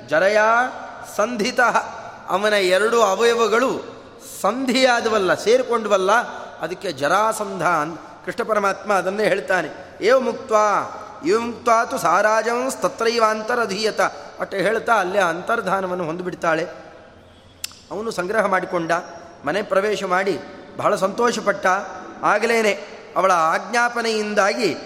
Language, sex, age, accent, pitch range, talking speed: Kannada, male, 30-49, native, 185-235 Hz, 85 wpm